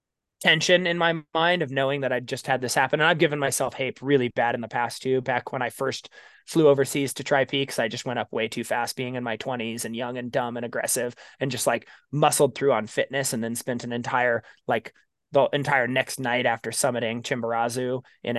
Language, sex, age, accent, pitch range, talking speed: English, male, 20-39, American, 125-160 Hz, 230 wpm